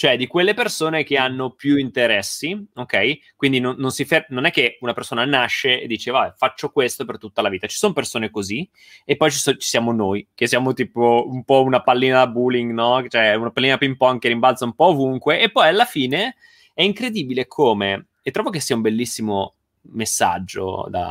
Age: 20-39